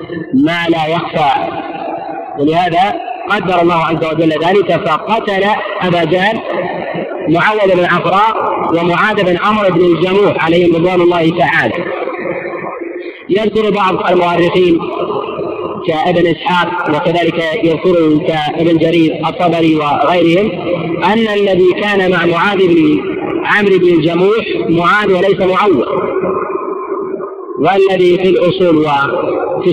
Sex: male